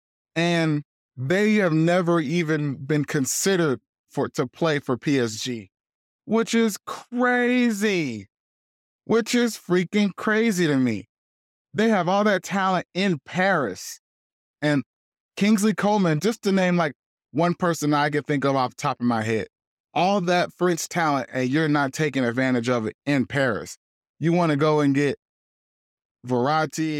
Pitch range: 130-170 Hz